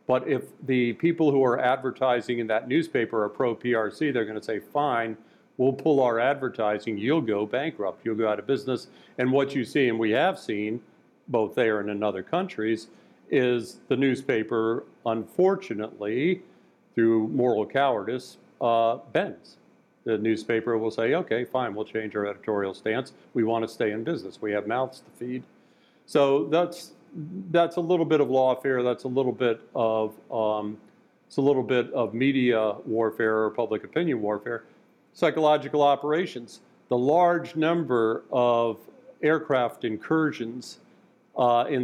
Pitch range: 110-140 Hz